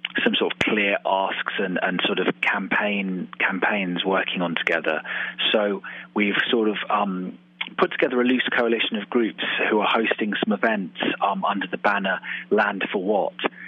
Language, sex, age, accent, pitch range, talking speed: English, male, 30-49, British, 90-105 Hz, 165 wpm